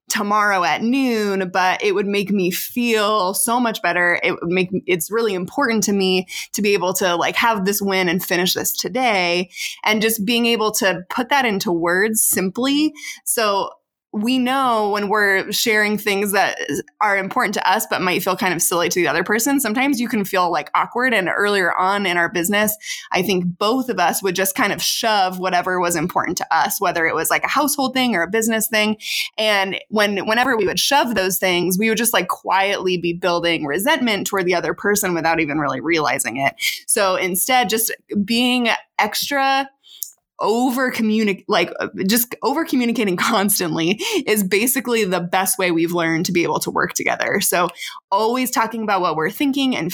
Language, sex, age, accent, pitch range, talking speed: English, female, 20-39, American, 185-235 Hz, 190 wpm